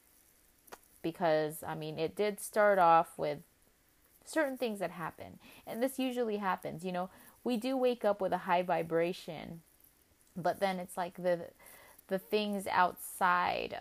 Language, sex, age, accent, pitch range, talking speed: English, female, 20-39, American, 160-200 Hz, 150 wpm